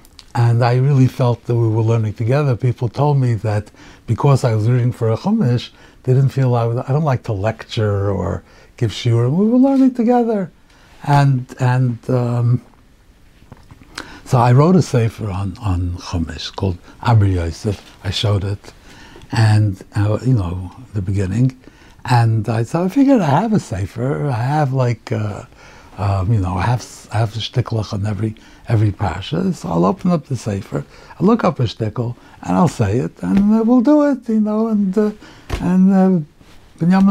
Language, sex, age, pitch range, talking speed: English, male, 60-79, 110-170 Hz, 185 wpm